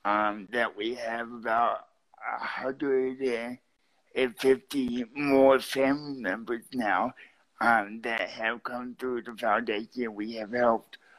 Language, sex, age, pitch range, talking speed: English, male, 60-79, 120-135 Hz, 125 wpm